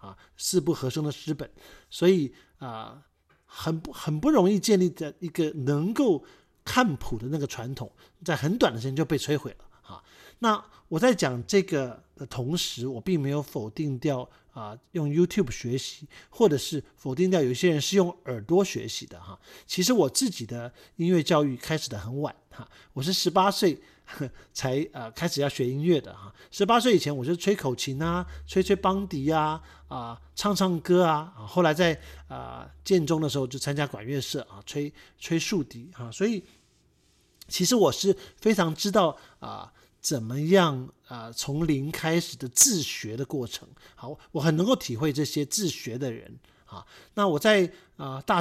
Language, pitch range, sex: Chinese, 135-185 Hz, male